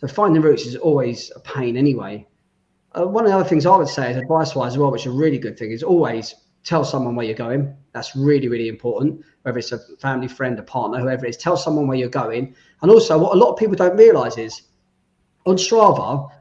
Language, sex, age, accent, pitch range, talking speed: English, male, 30-49, British, 130-165 Hz, 240 wpm